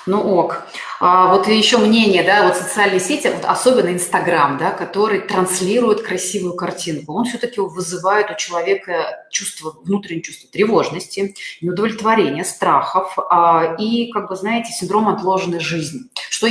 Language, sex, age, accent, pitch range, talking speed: Russian, female, 30-49, native, 170-230 Hz, 130 wpm